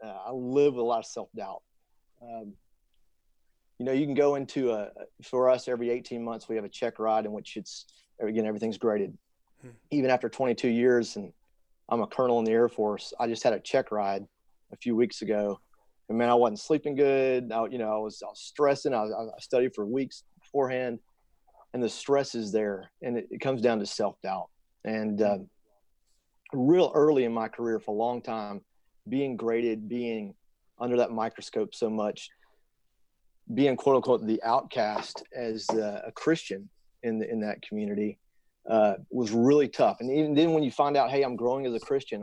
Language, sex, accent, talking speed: English, male, American, 190 wpm